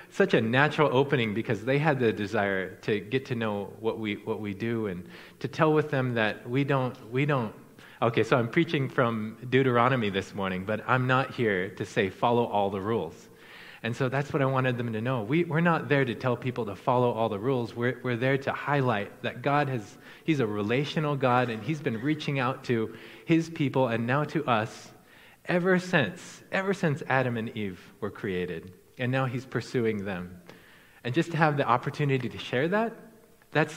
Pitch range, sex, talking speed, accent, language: 115-150 Hz, male, 205 wpm, American, English